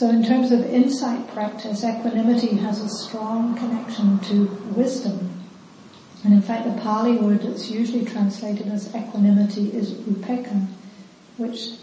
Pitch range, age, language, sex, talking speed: 200-225 Hz, 60-79, English, female, 135 wpm